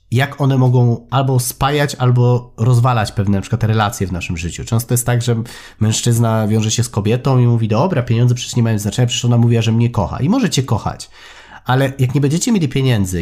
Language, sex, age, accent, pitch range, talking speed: Polish, male, 30-49, native, 115-135 Hz, 215 wpm